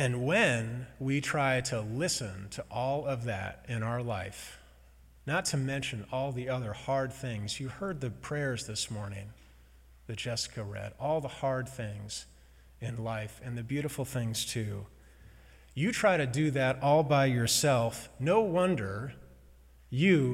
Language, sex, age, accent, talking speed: English, male, 30-49, American, 155 wpm